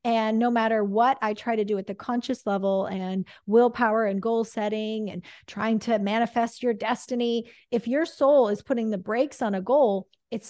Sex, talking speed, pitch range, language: female, 195 wpm, 205-245 Hz, English